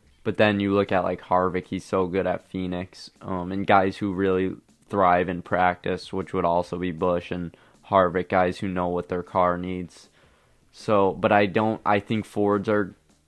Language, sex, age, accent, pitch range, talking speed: English, male, 20-39, American, 90-100 Hz, 190 wpm